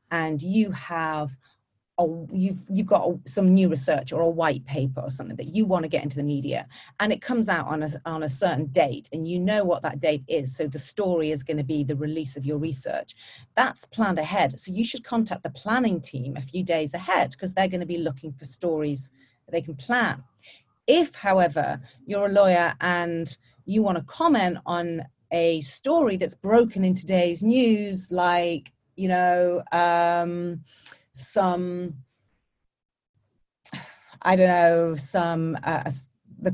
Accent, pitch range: British, 150-195 Hz